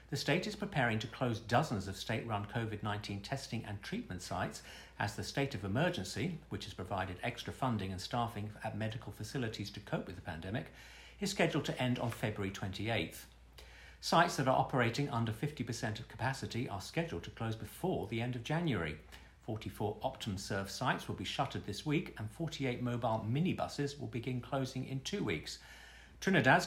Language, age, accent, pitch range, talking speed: English, 50-69, British, 105-140 Hz, 175 wpm